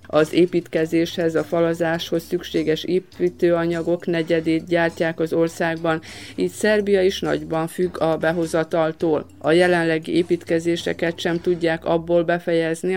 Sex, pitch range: female, 160-180 Hz